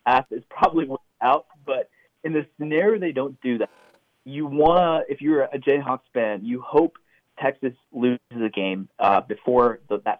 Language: English